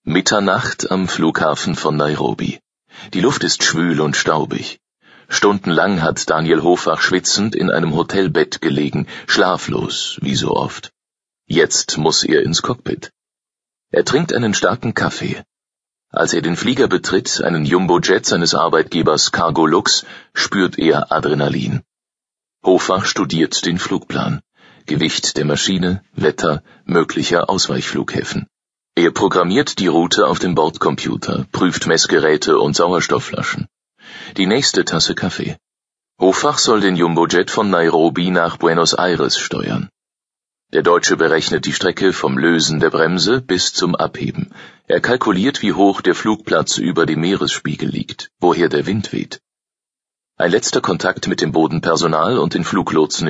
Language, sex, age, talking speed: German, male, 40-59, 135 wpm